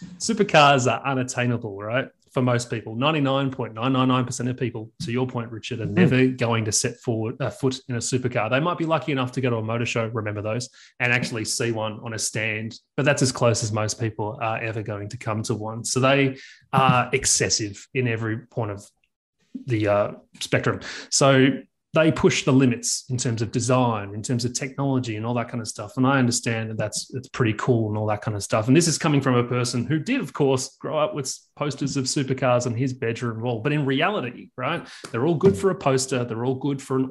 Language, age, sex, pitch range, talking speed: English, 30-49, male, 115-135 Hz, 220 wpm